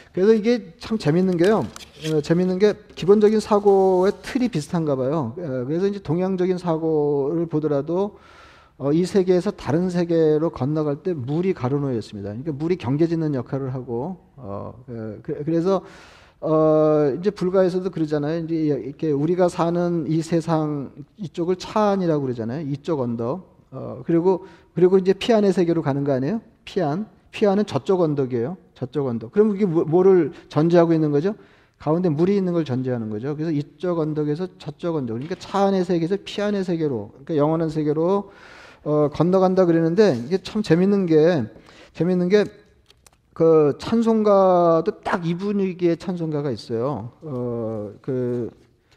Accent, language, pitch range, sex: native, Korean, 145-185 Hz, male